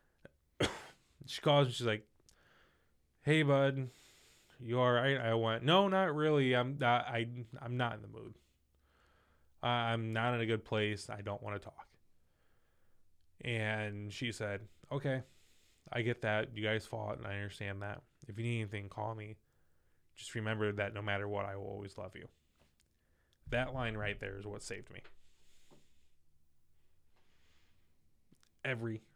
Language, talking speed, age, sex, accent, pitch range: English, 150 wpm, 20-39, male, American, 95-125 Hz